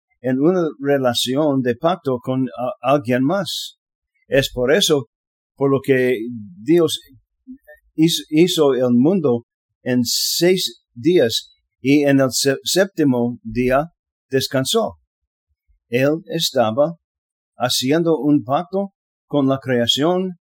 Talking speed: 105 wpm